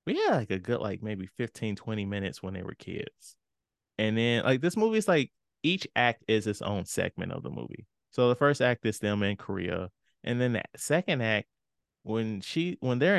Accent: American